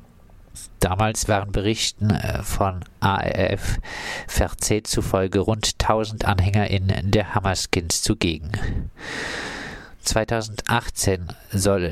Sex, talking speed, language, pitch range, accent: male, 75 wpm, German, 95-110 Hz, German